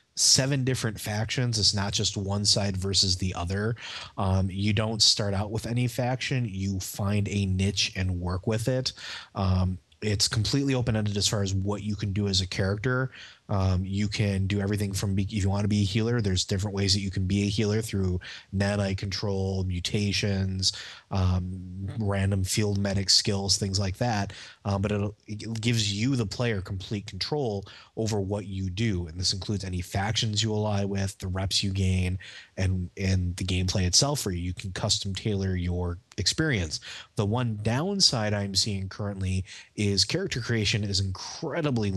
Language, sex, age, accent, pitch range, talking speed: English, male, 30-49, American, 95-110 Hz, 180 wpm